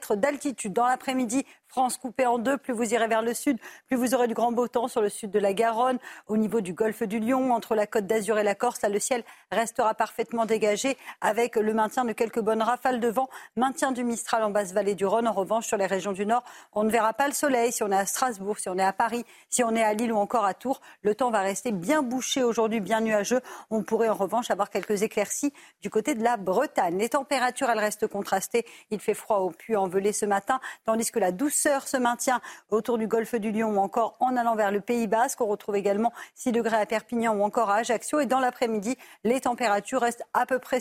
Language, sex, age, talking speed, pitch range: French, female, 50-69, 245 wpm, 210-255 Hz